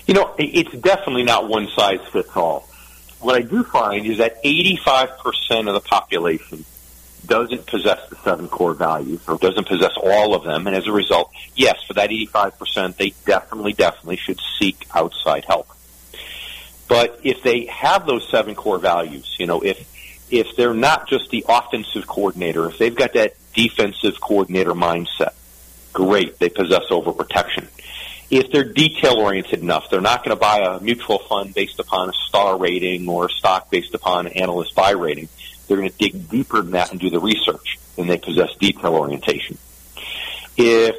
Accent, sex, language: American, male, English